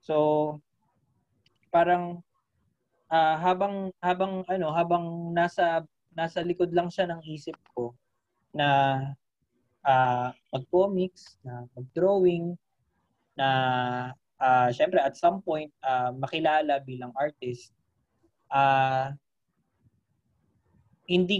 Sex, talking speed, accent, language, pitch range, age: male, 90 wpm, native, Filipino, 130-170 Hz, 20-39